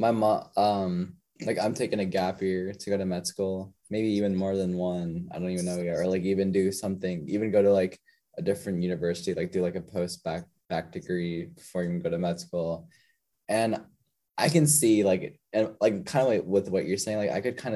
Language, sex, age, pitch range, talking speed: English, male, 10-29, 90-115 Hz, 230 wpm